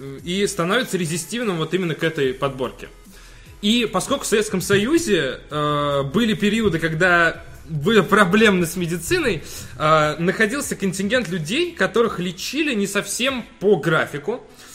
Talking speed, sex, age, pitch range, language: 125 wpm, male, 20-39, 160-210 Hz, Russian